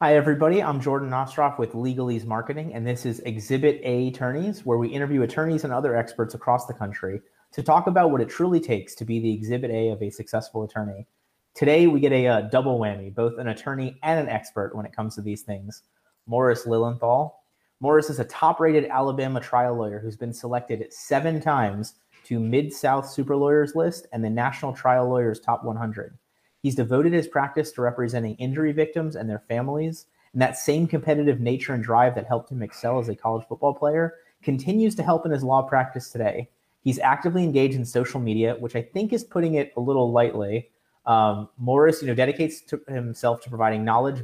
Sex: male